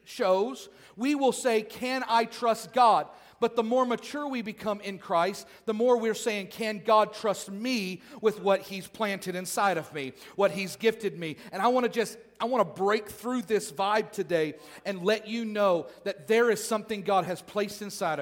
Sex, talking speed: male, 200 wpm